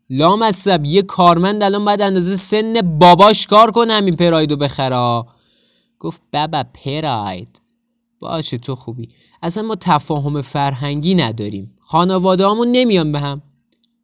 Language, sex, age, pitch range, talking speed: Persian, male, 20-39, 140-205 Hz, 125 wpm